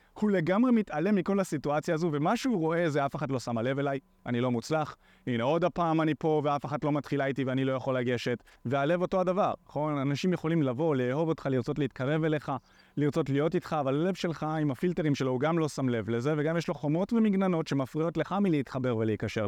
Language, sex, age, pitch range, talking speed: Hebrew, male, 30-49, 135-190 Hz, 215 wpm